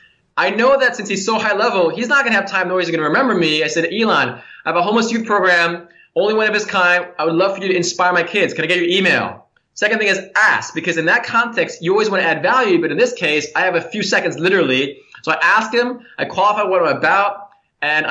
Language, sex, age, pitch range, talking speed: English, male, 20-39, 170-225 Hz, 275 wpm